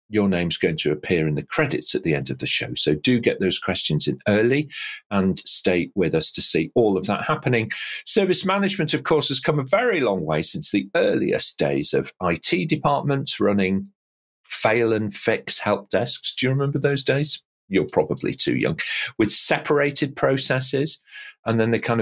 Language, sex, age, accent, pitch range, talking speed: English, male, 40-59, British, 95-145 Hz, 190 wpm